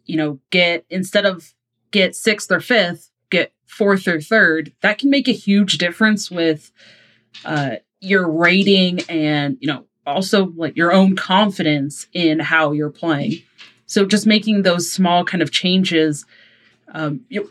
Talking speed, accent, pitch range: 155 wpm, American, 165-220 Hz